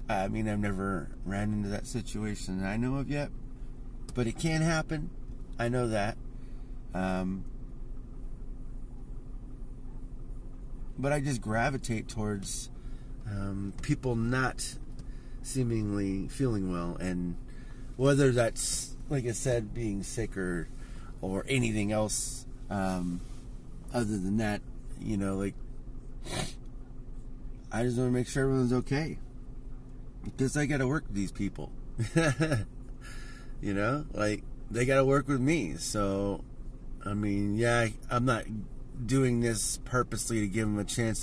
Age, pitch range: 30-49, 105-130 Hz